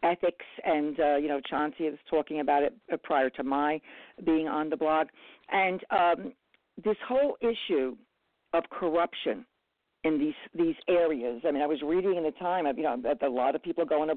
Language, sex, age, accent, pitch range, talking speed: English, female, 50-69, American, 155-215 Hz, 195 wpm